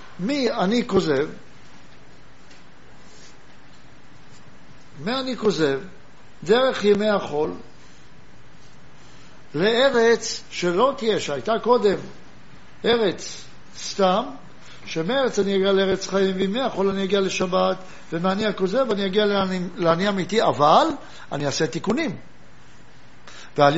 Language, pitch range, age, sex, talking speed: Hebrew, 175-230 Hz, 60-79, male, 95 wpm